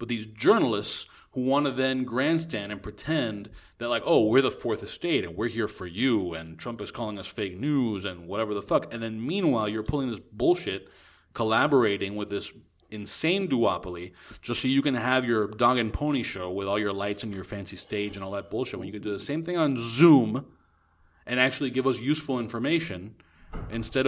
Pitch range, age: 100-160 Hz, 30-49